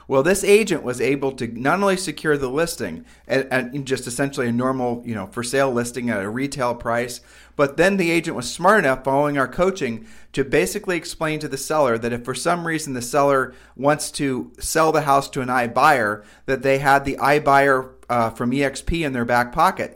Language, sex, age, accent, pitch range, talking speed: English, male, 40-59, American, 120-155 Hz, 210 wpm